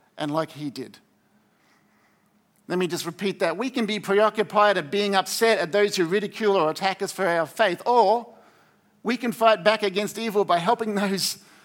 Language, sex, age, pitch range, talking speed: English, male, 50-69, 175-220 Hz, 185 wpm